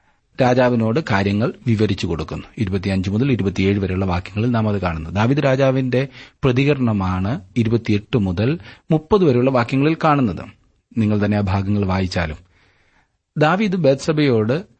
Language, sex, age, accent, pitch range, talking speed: Malayalam, male, 40-59, native, 100-130 Hz, 120 wpm